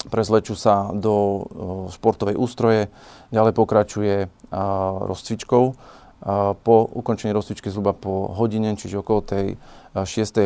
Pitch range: 100-110 Hz